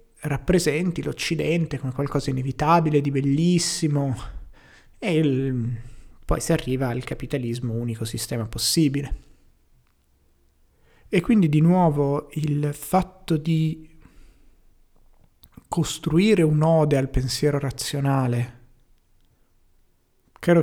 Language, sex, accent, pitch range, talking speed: Italian, male, native, 130-155 Hz, 85 wpm